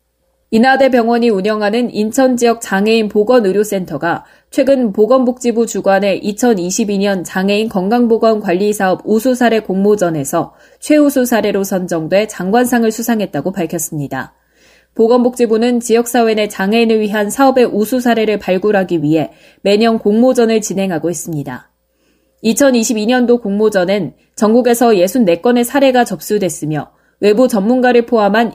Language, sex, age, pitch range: Korean, female, 20-39, 190-240 Hz